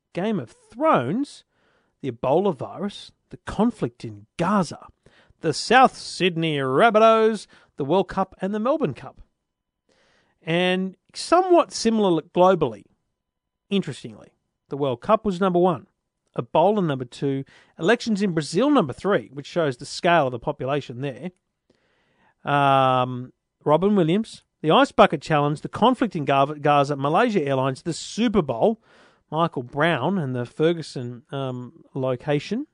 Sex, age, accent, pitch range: male, 40-59, Australian, 145-205 Hz